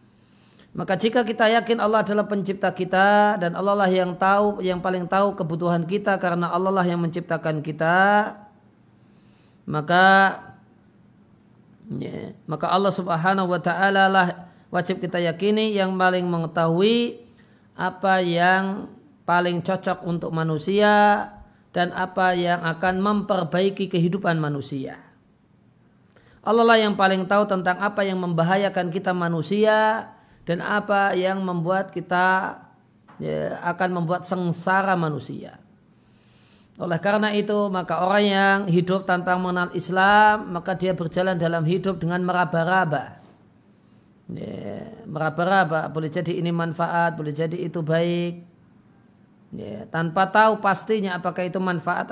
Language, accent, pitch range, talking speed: Indonesian, native, 170-195 Hz, 120 wpm